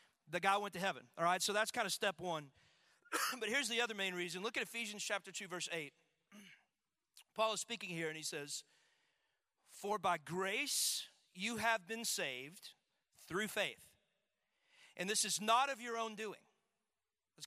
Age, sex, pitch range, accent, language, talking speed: 40-59, male, 195-245 Hz, American, English, 175 wpm